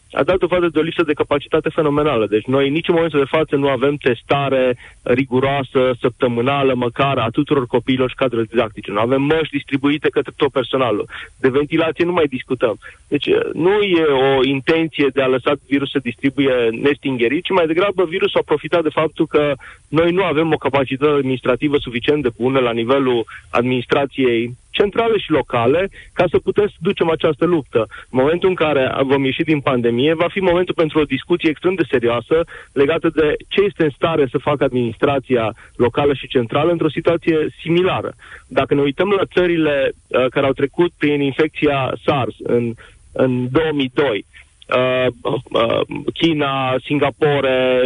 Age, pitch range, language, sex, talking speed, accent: 30-49, 130-165 Hz, Romanian, male, 165 wpm, native